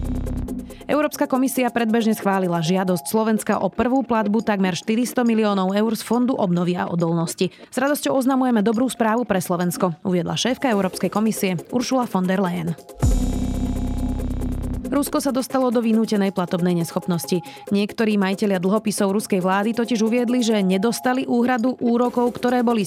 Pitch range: 175-230 Hz